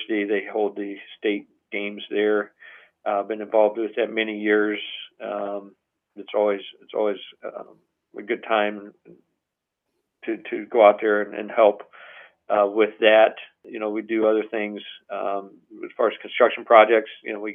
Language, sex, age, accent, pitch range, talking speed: English, male, 50-69, American, 100-120 Hz, 170 wpm